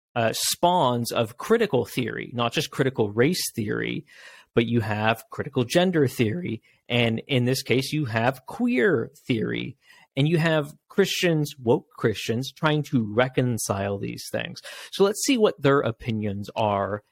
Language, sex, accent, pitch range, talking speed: English, male, American, 115-160 Hz, 145 wpm